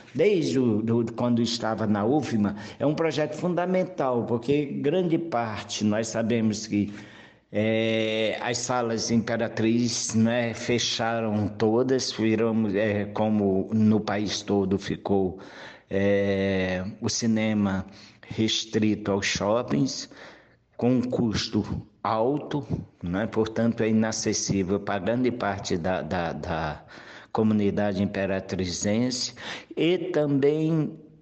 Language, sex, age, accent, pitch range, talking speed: Portuguese, male, 60-79, Brazilian, 105-125 Hz, 105 wpm